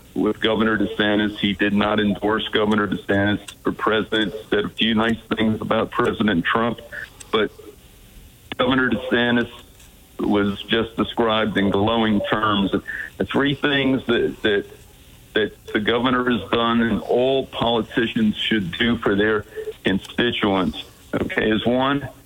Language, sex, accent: English, male, American